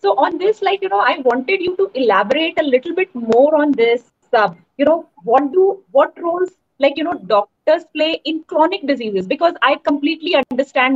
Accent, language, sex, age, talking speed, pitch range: native, Hindi, female, 20-39, 205 wpm, 240-345 Hz